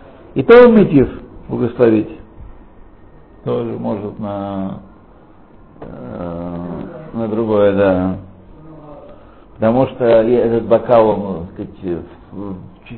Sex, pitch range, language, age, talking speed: male, 105-160 Hz, Russian, 60-79, 85 wpm